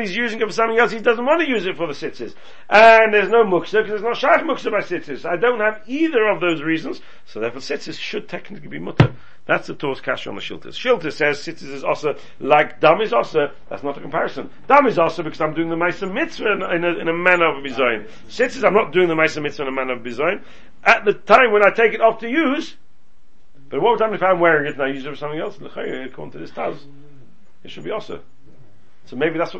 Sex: male